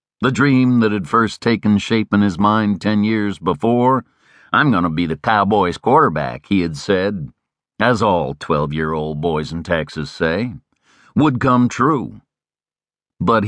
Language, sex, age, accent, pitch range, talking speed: English, male, 60-79, American, 95-125 Hz, 145 wpm